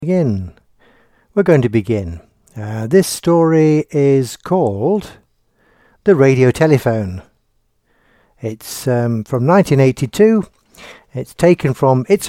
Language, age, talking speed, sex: English, 60-79, 105 wpm, male